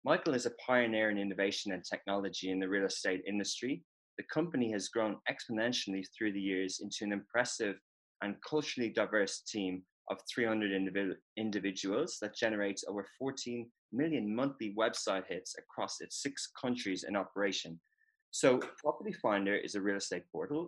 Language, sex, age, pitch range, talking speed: English, male, 20-39, 100-125 Hz, 155 wpm